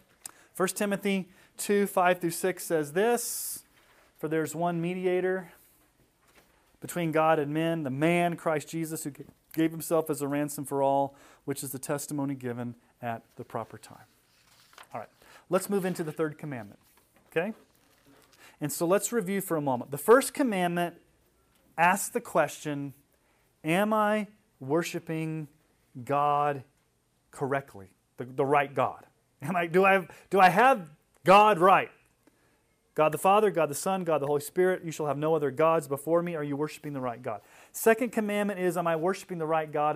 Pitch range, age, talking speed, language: 135-180 Hz, 30-49, 165 wpm, English